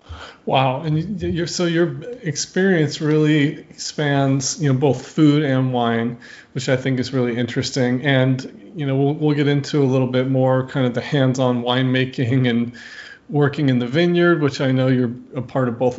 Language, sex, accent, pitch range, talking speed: English, male, American, 125-145 Hz, 185 wpm